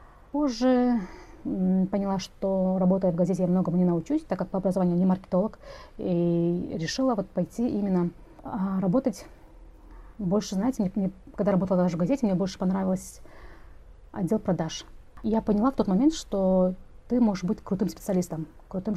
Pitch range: 180-210 Hz